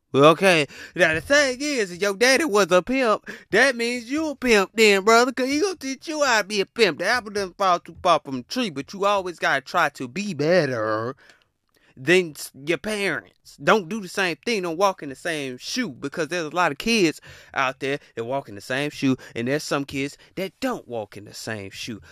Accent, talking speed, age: American, 235 wpm, 20-39